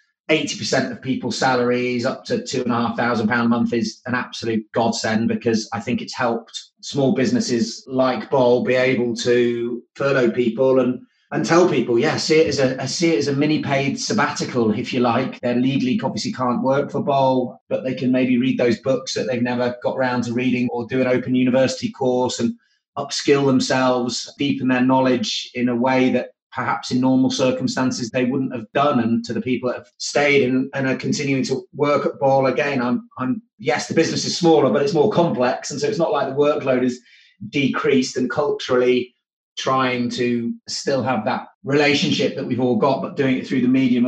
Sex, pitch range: male, 120-135 Hz